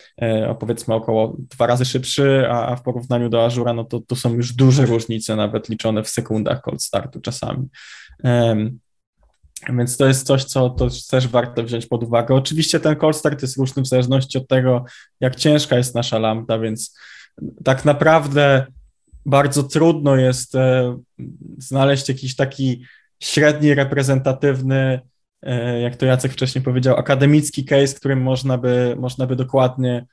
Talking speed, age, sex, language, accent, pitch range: 150 wpm, 20-39, male, Polish, native, 125-145 Hz